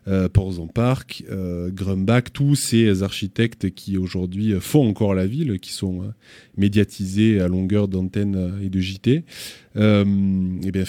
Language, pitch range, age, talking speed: French, 95-115 Hz, 20-39, 150 wpm